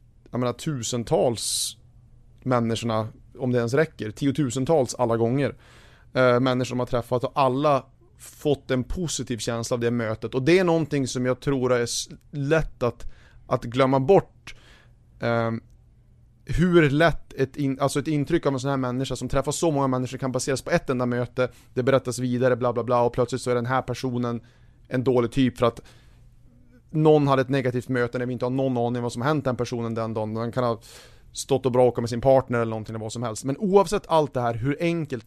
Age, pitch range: 30-49, 120-135 Hz